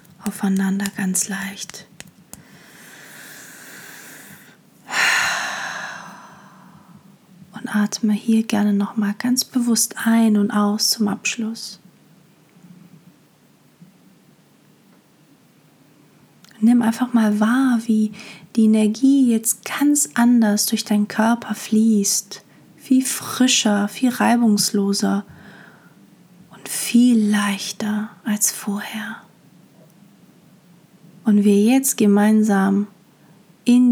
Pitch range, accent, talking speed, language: 195-220 Hz, German, 75 wpm, German